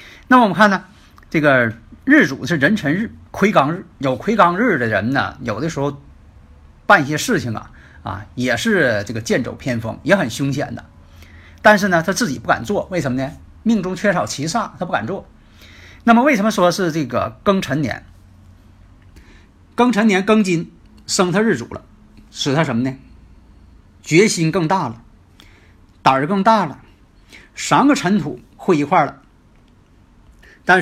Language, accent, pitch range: Chinese, native, 105-180 Hz